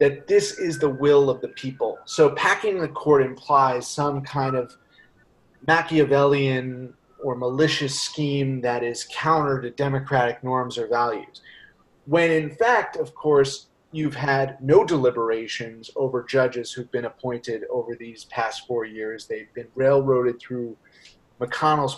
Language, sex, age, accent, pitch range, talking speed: English, male, 30-49, American, 125-160 Hz, 140 wpm